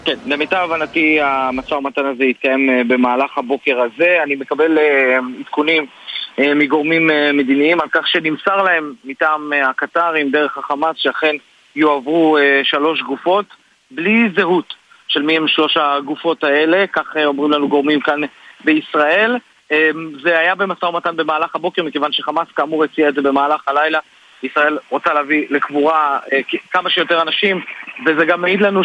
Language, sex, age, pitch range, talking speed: Hebrew, male, 30-49, 150-180 Hz, 135 wpm